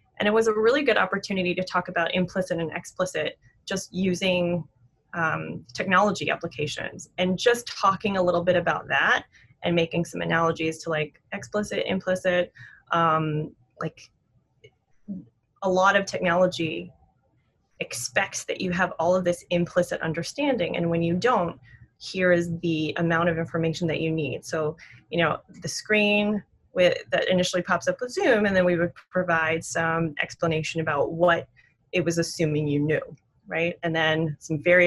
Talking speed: 160 wpm